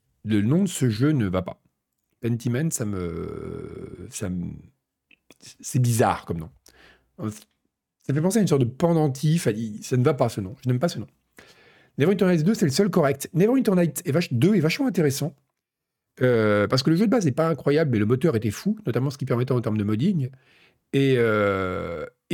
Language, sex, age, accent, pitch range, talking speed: French, male, 40-59, French, 115-160 Hz, 205 wpm